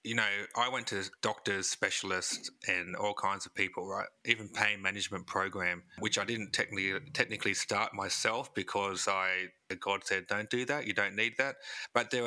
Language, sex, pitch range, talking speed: English, male, 105-125 Hz, 180 wpm